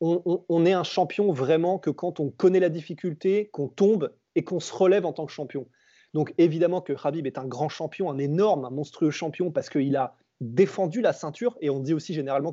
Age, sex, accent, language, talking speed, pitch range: 20-39, male, French, French, 220 wpm, 150-195 Hz